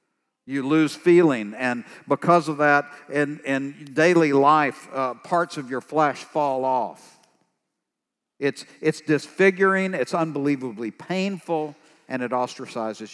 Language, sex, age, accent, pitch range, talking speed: English, male, 60-79, American, 140-200 Hz, 125 wpm